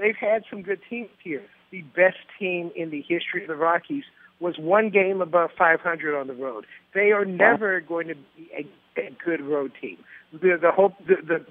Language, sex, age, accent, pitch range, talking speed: English, male, 50-69, American, 170-210 Hz, 195 wpm